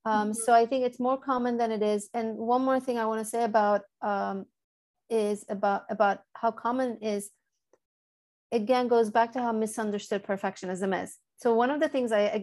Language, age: English, 30-49